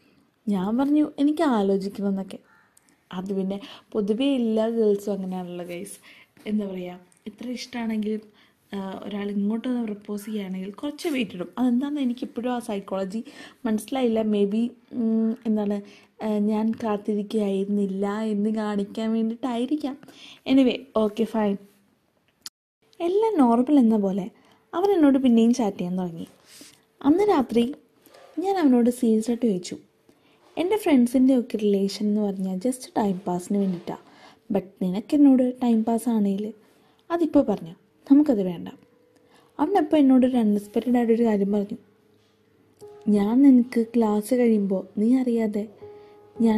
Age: 20-39